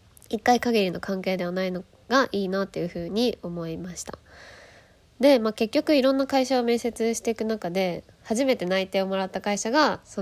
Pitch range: 175-225 Hz